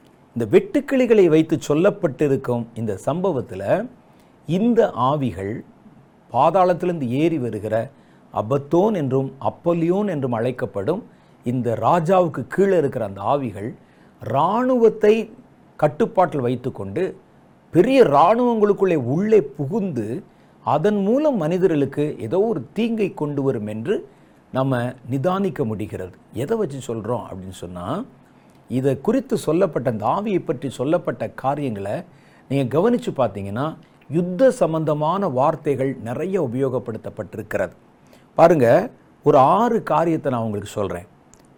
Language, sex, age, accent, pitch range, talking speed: Tamil, male, 50-69, native, 125-190 Hz, 100 wpm